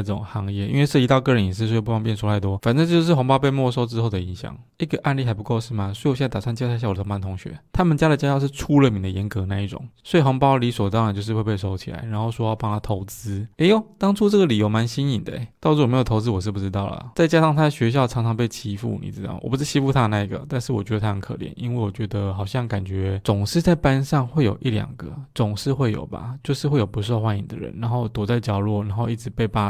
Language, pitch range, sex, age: Chinese, 105-135 Hz, male, 20-39